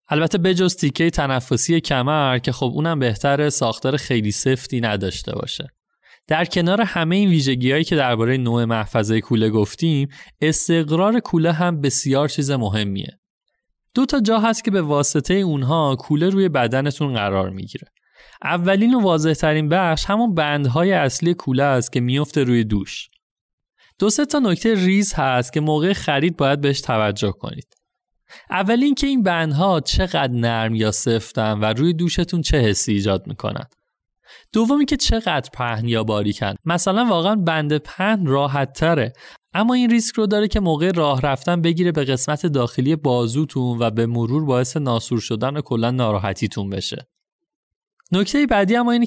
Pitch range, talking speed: 125-180 Hz, 155 wpm